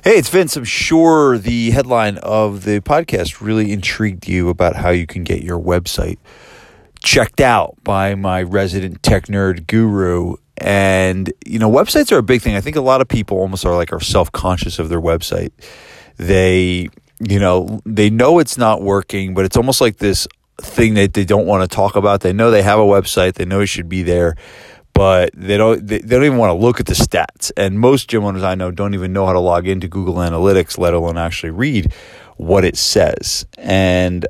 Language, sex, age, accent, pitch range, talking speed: English, male, 30-49, American, 90-110 Hz, 205 wpm